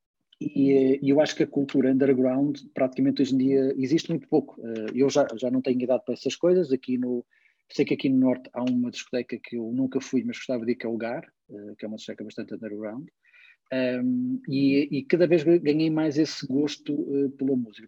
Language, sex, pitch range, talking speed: Portuguese, male, 125-155 Hz, 205 wpm